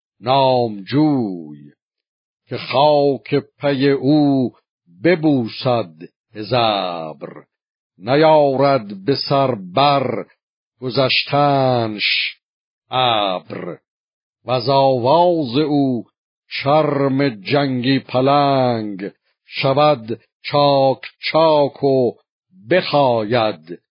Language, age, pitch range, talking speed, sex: Persian, 60-79, 115-145 Hz, 65 wpm, male